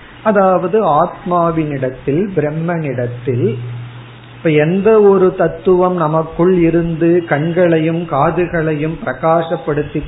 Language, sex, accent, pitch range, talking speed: Tamil, male, native, 135-175 Hz, 65 wpm